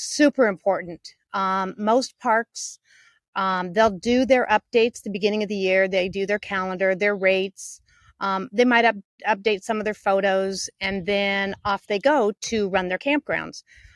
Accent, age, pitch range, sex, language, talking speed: American, 40-59, 190-230 Hz, female, English, 165 wpm